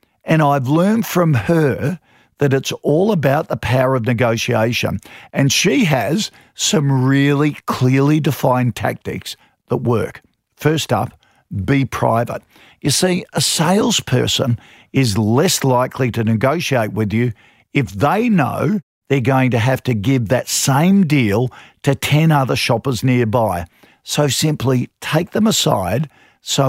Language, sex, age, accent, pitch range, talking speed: English, male, 50-69, Australian, 120-150 Hz, 135 wpm